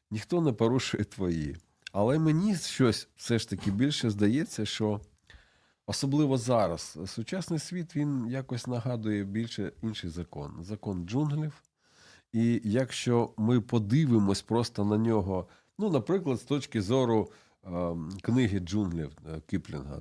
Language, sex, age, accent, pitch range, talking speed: Ukrainian, male, 40-59, native, 100-140 Hz, 125 wpm